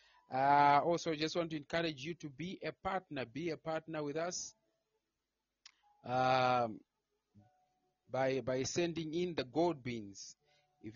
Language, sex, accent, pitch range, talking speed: English, male, South African, 130-160 Hz, 135 wpm